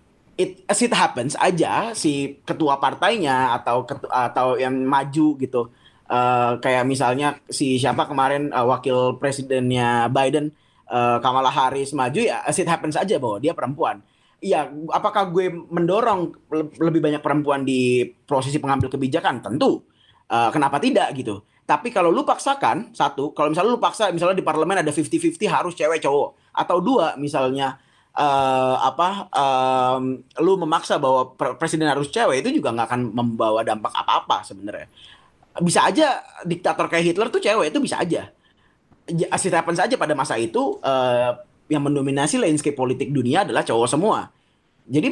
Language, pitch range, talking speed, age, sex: Indonesian, 130-175 Hz, 155 wpm, 20-39, male